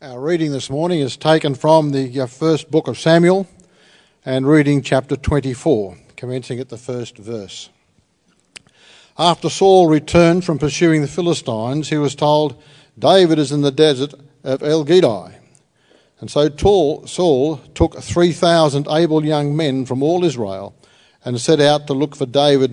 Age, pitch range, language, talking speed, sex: 50-69, 130-160 Hz, English, 150 wpm, male